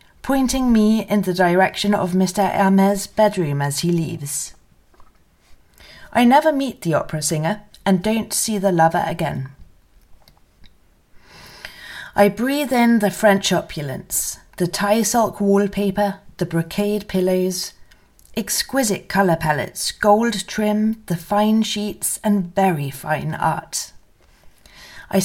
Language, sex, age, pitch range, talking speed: English, female, 30-49, 170-220 Hz, 120 wpm